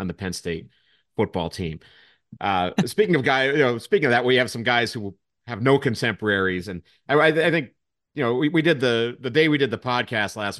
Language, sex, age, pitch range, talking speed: English, male, 40-59, 95-120 Hz, 225 wpm